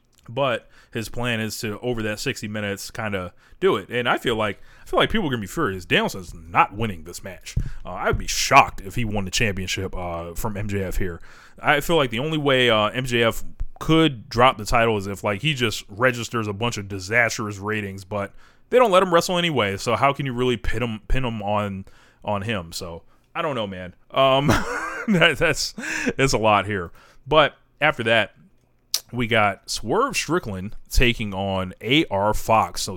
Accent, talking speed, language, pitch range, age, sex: American, 200 wpm, English, 100-120 Hz, 30-49, male